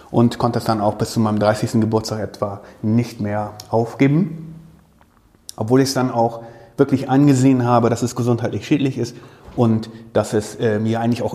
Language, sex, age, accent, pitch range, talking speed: German, male, 30-49, German, 110-130 Hz, 180 wpm